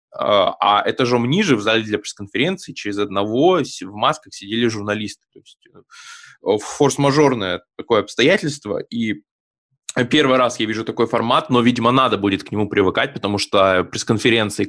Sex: male